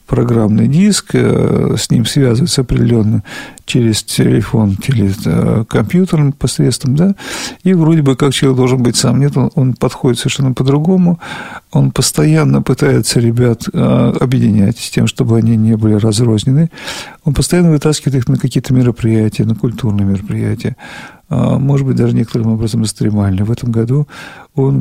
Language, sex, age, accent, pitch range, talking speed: Russian, male, 50-69, native, 115-150 Hz, 140 wpm